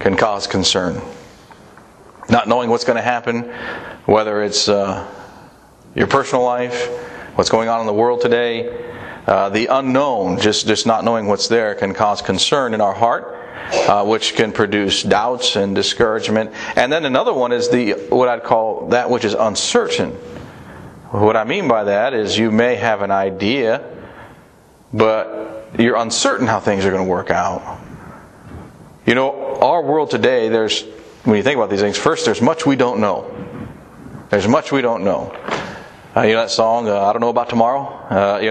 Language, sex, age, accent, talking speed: English, male, 40-59, American, 180 wpm